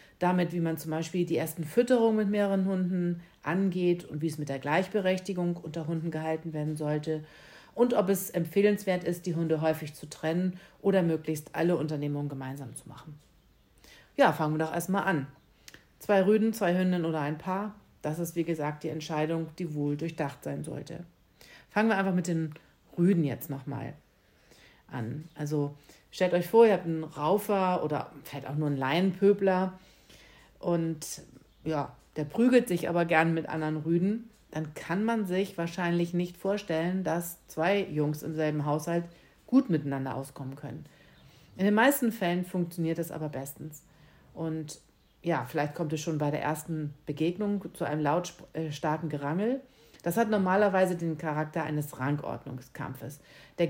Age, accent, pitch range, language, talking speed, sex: 50-69, German, 150-185 Hz, German, 160 wpm, female